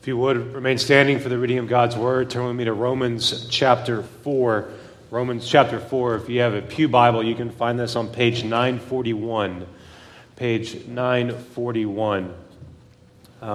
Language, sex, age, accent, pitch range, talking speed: English, male, 30-49, American, 105-135 Hz, 160 wpm